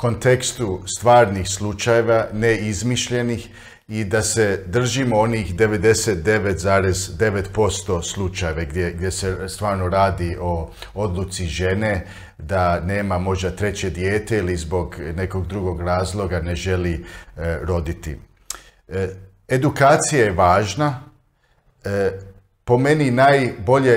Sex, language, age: male, Croatian, 50-69